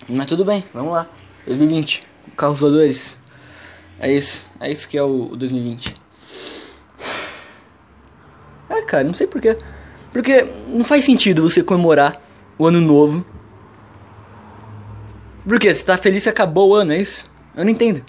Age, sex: 20-39, male